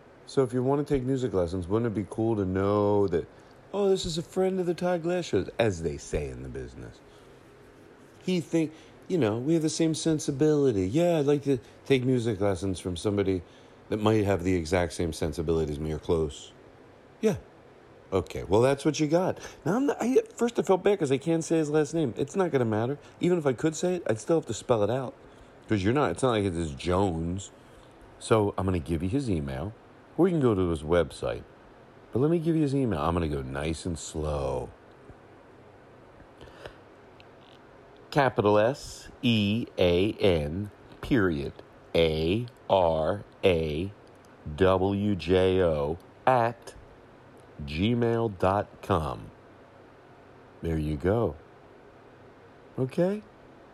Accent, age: American, 40-59